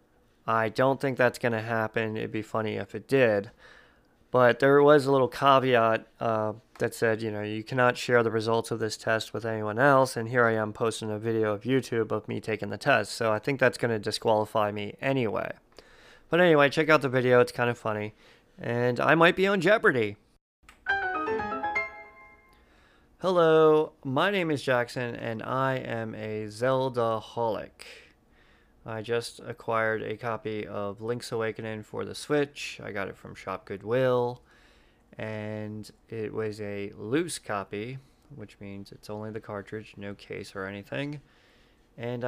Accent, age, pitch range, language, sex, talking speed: American, 20-39, 110-135 Hz, English, male, 165 wpm